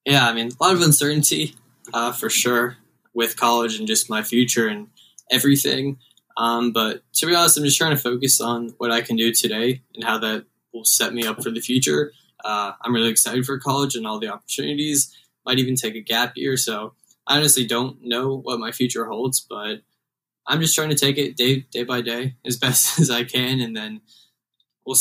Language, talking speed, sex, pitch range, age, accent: English, 210 wpm, male, 115-140 Hz, 10-29, American